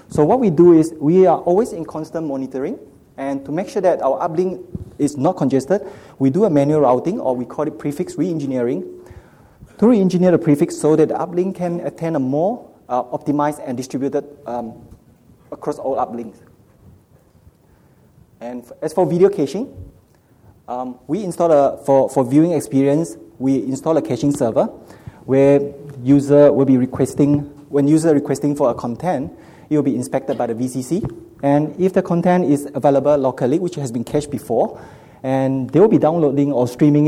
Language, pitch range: English, 125-155 Hz